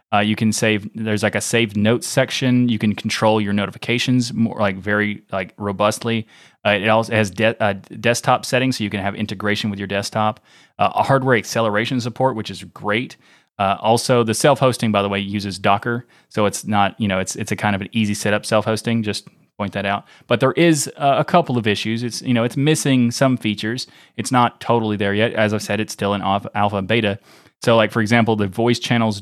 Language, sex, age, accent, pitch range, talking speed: English, male, 30-49, American, 105-120 Hz, 220 wpm